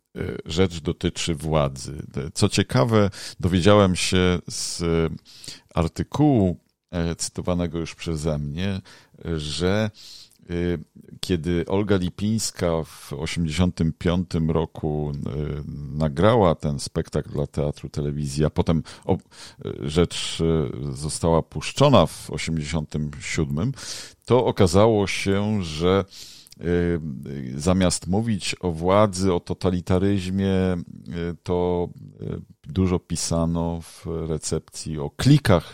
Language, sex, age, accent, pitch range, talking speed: Polish, male, 50-69, native, 80-100 Hz, 85 wpm